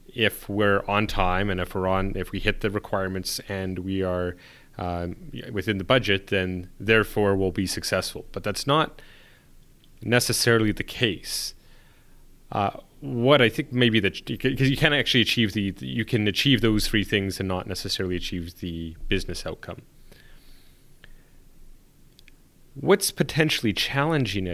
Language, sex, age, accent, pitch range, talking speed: English, male, 30-49, American, 95-120 Hz, 145 wpm